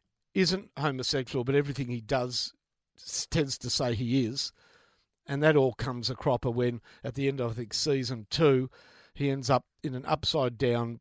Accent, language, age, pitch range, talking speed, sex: Australian, English, 50-69, 120-150 Hz, 180 wpm, male